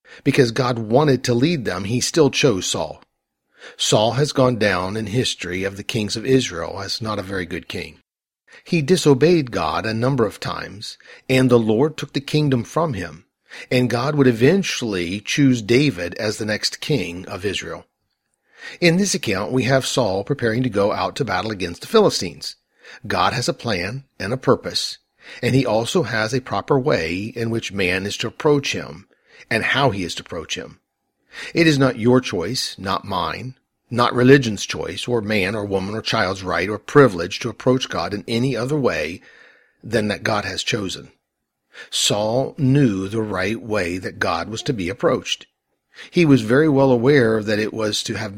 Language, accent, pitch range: English, American, 100-130 Hz